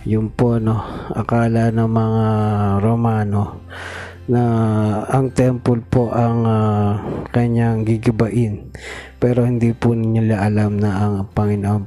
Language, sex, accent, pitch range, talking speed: Filipino, male, native, 105-120 Hz, 115 wpm